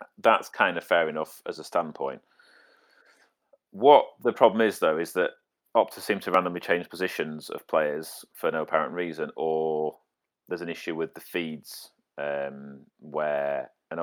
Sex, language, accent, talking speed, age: male, English, British, 160 wpm, 30-49